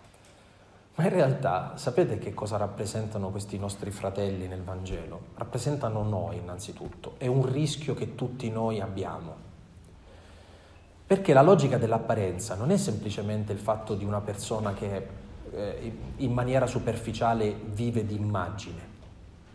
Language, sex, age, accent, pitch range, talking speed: Italian, male, 30-49, native, 100-135 Hz, 125 wpm